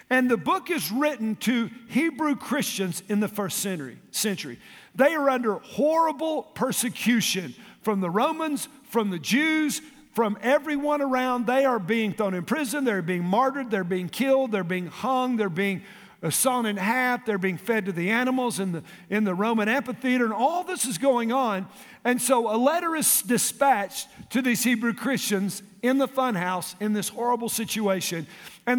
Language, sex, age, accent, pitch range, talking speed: English, male, 50-69, American, 200-260 Hz, 170 wpm